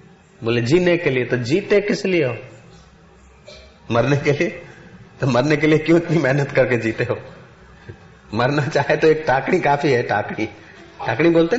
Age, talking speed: 40-59, 165 wpm